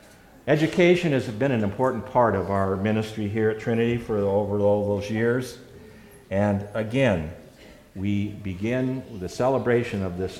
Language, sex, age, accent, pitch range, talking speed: English, male, 50-69, American, 95-125 Hz, 145 wpm